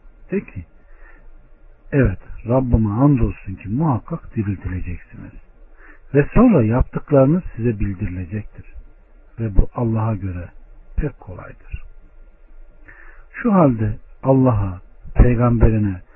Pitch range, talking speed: 95-135 Hz, 85 wpm